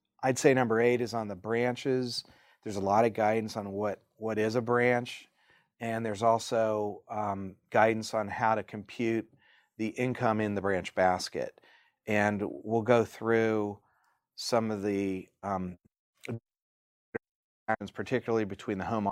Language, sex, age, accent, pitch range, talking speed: English, male, 40-59, American, 100-115 Hz, 145 wpm